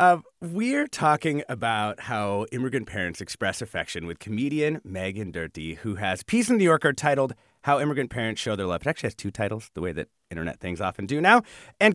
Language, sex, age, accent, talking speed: English, male, 30-49, American, 200 wpm